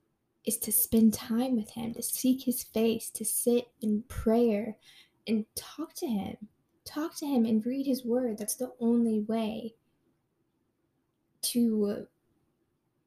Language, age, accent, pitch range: English, 10-29, American, 210-240 Hz